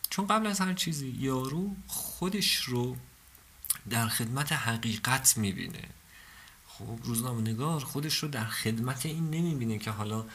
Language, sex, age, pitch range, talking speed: Persian, male, 50-69, 105-150 Hz, 135 wpm